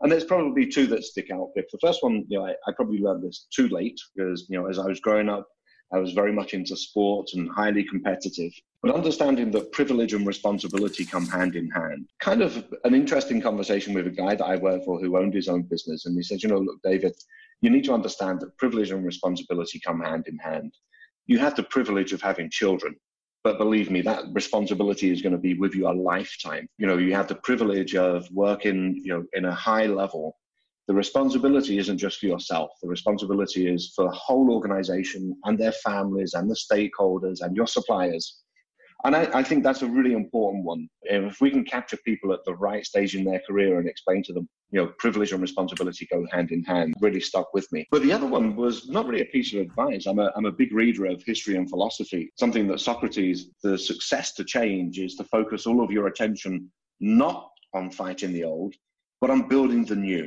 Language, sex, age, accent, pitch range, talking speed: English, male, 30-49, British, 95-120 Hz, 220 wpm